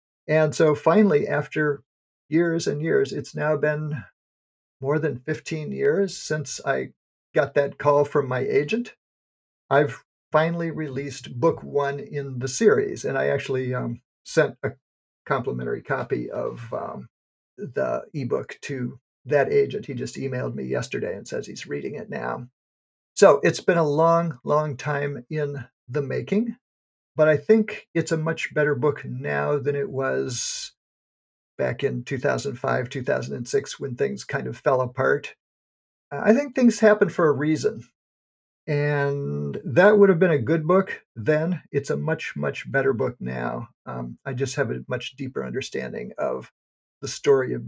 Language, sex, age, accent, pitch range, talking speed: English, male, 50-69, American, 135-165 Hz, 155 wpm